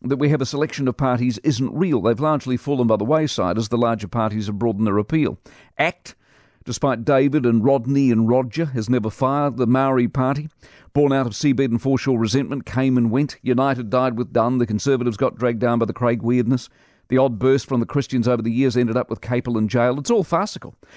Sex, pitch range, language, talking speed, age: male, 115-150 Hz, English, 220 wpm, 50-69